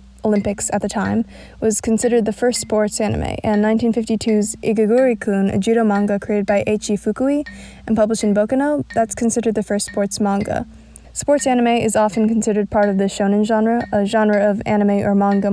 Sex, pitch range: female, 200-225 Hz